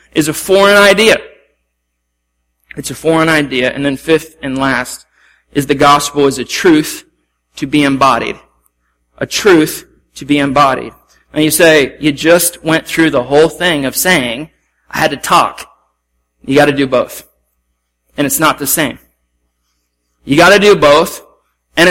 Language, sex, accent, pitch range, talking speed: English, male, American, 135-165 Hz, 160 wpm